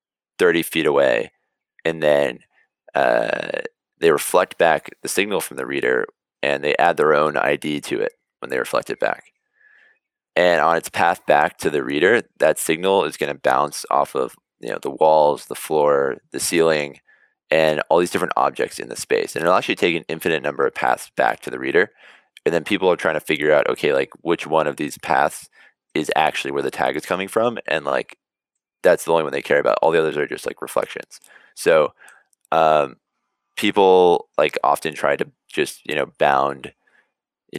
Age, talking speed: 20-39, 195 wpm